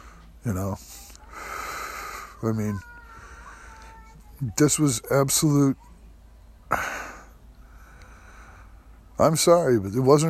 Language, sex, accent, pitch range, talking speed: English, male, American, 85-125 Hz, 70 wpm